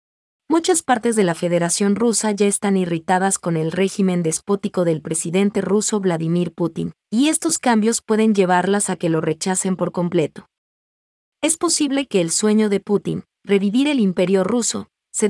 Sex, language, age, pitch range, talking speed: female, Vietnamese, 30-49, 175-215 Hz, 160 wpm